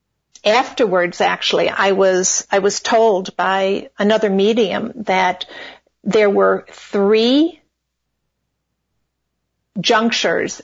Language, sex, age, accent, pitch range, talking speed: English, female, 50-69, American, 195-225 Hz, 85 wpm